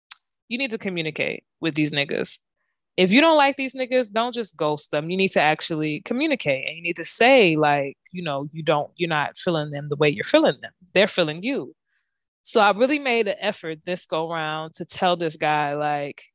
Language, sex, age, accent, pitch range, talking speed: English, female, 20-39, American, 165-220 Hz, 215 wpm